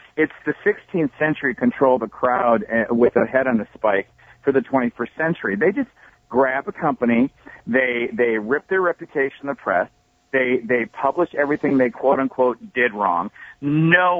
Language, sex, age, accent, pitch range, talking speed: English, male, 50-69, American, 120-155 Hz, 175 wpm